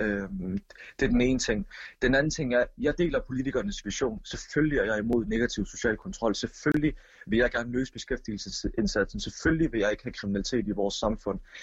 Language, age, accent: Danish, 30-49, native